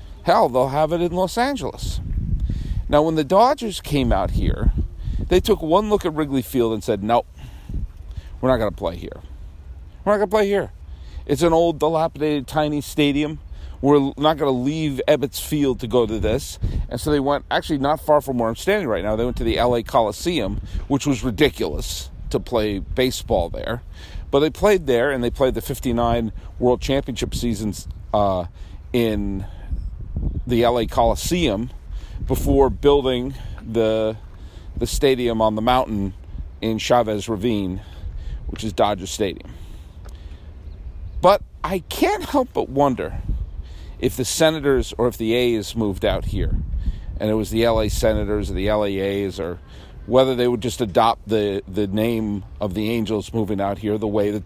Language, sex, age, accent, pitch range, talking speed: English, male, 40-59, American, 90-130 Hz, 170 wpm